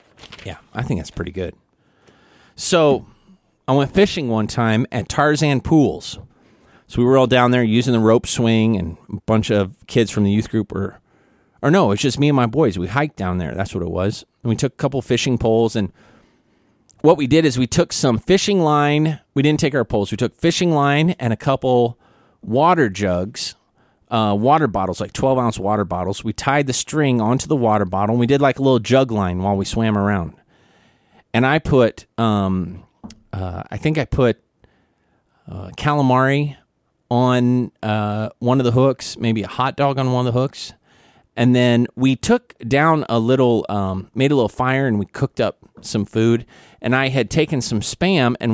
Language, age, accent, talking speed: English, 30-49, American, 200 wpm